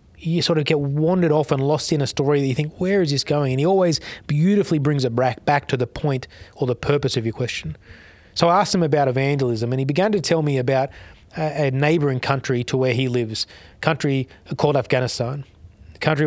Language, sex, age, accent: English, male, 30-49, Australian